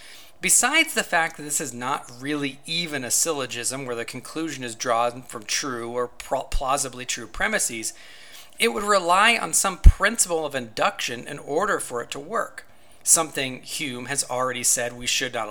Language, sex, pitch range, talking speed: English, male, 120-160 Hz, 170 wpm